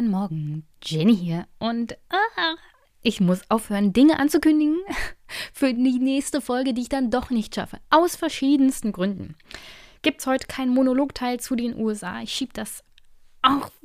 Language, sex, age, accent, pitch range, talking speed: German, female, 20-39, German, 200-260 Hz, 150 wpm